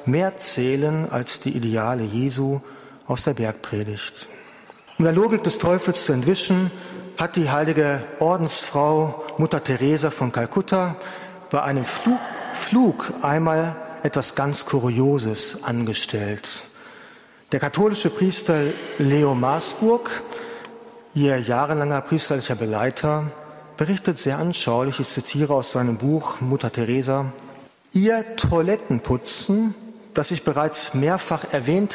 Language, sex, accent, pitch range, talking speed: German, male, German, 135-180 Hz, 110 wpm